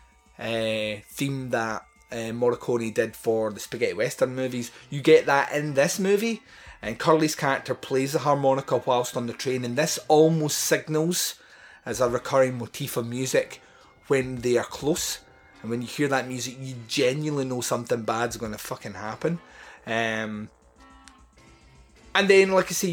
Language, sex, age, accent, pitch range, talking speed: English, male, 30-49, British, 115-160 Hz, 160 wpm